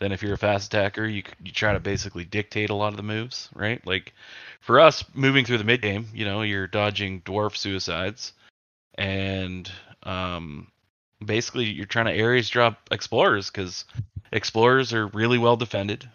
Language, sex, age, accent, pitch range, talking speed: English, male, 20-39, American, 100-115 Hz, 175 wpm